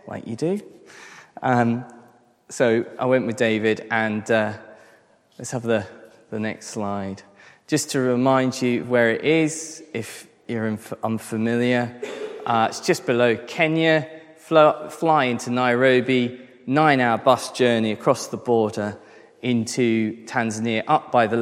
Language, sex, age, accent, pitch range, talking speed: English, male, 20-39, British, 110-130 Hz, 130 wpm